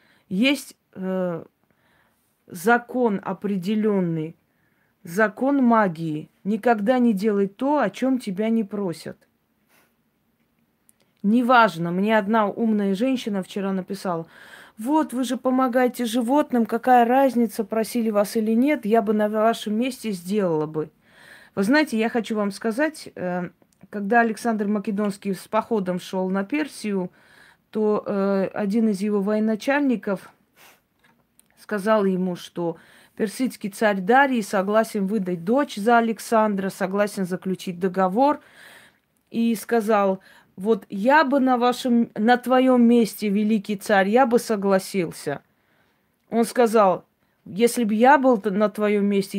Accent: native